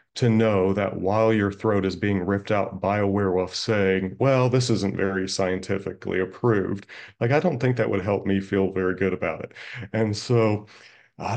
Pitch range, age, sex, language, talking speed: 95-115 Hz, 30-49, male, English, 190 wpm